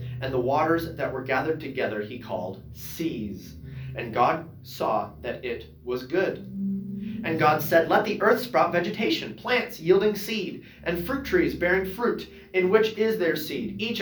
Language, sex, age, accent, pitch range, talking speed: English, male, 30-49, American, 125-195 Hz, 165 wpm